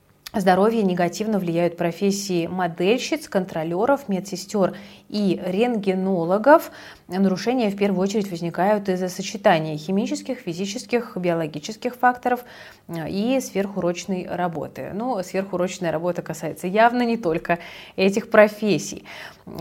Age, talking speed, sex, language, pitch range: 20-39, 100 wpm, female, Russian, 175-220 Hz